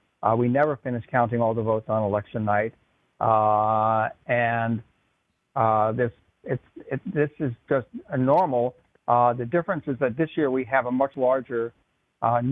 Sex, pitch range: male, 120-145 Hz